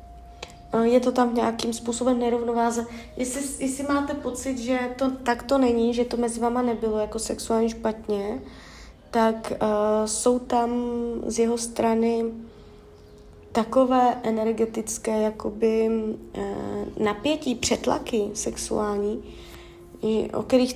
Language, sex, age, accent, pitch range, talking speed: Czech, female, 20-39, native, 220-250 Hz, 115 wpm